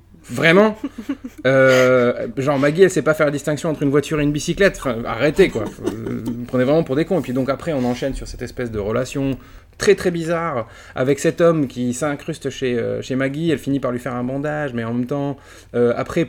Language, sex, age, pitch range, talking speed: French, male, 20-39, 120-160 Hz, 220 wpm